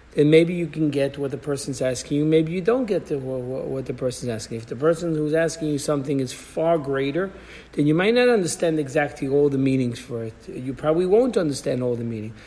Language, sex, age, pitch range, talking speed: English, male, 50-69, 150-205 Hz, 230 wpm